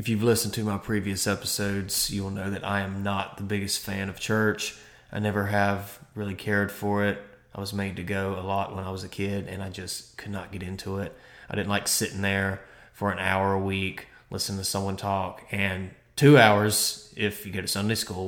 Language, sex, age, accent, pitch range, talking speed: English, male, 20-39, American, 95-105 Hz, 225 wpm